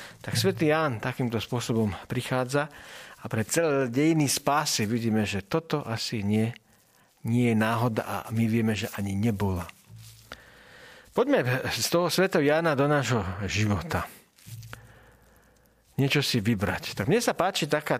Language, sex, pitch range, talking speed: Slovak, male, 110-140 Hz, 135 wpm